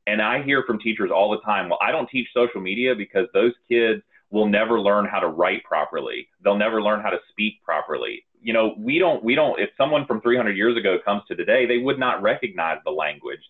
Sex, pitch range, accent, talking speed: male, 100-125 Hz, American, 230 wpm